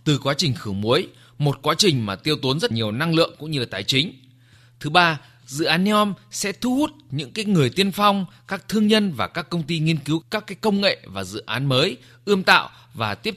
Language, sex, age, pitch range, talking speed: Vietnamese, male, 20-39, 120-175 Hz, 240 wpm